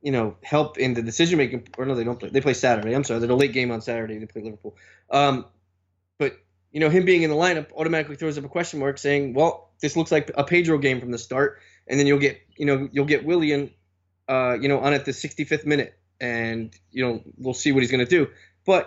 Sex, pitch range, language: male, 110-140 Hz, English